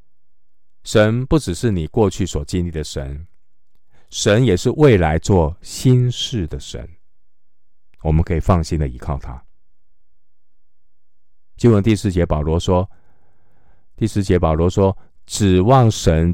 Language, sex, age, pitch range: Chinese, male, 50-69, 75-95 Hz